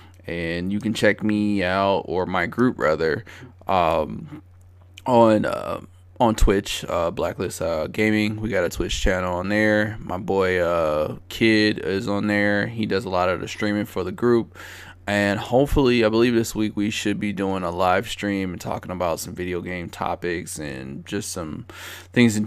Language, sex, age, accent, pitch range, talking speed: English, male, 20-39, American, 90-110 Hz, 180 wpm